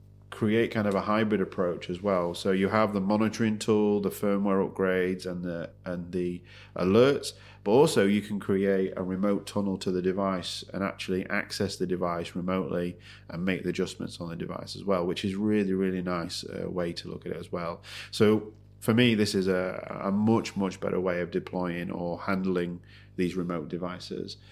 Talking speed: 195 wpm